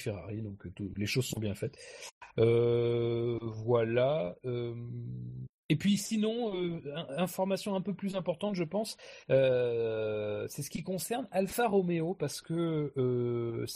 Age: 40-59